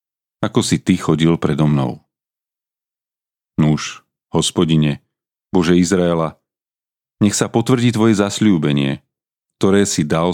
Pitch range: 80-105 Hz